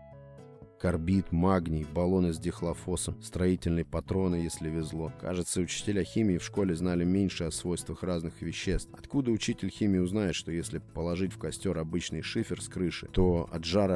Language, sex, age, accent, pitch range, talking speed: Russian, male, 30-49, native, 85-95 Hz, 155 wpm